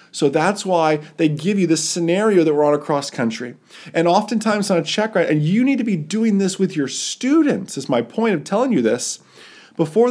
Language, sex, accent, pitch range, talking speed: English, male, American, 125-185 Hz, 215 wpm